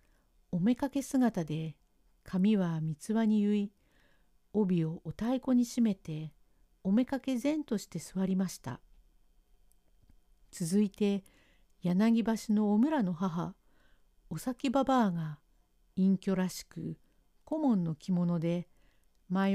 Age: 50-69